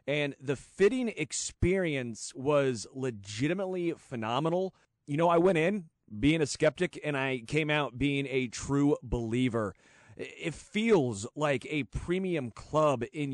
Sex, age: male, 30-49